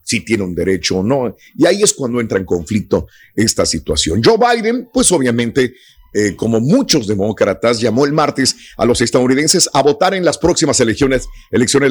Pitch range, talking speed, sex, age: 105-145 Hz, 180 wpm, male, 50-69